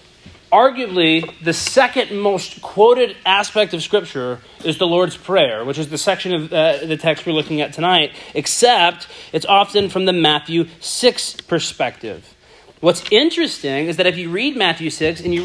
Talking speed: 165 wpm